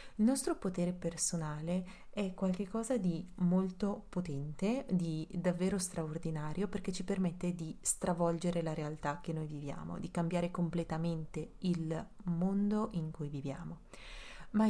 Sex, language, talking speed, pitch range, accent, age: female, Italian, 125 wpm, 165-195 Hz, native, 30-49